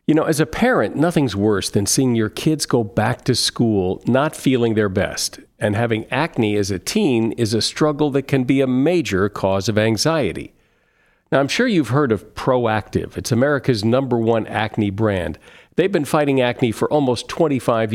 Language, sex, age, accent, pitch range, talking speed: English, male, 50-69, American, 110-150 Hz, 185 wpm